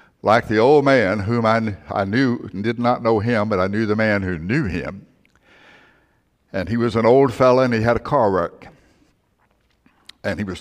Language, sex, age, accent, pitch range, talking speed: English, male, 60-79, American, 100-130 Hz, 205 wpm